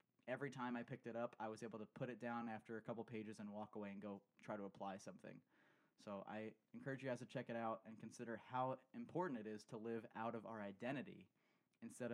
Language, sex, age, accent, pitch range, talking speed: English, male, 20-39, American, 110-120 Hz, 235 wpm